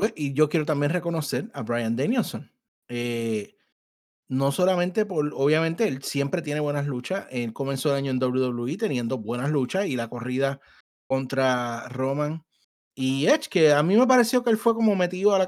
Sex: male